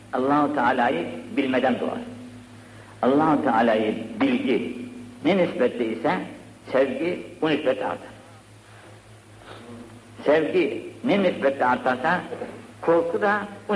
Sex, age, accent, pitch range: male, 60-79, native, 110-135 Hz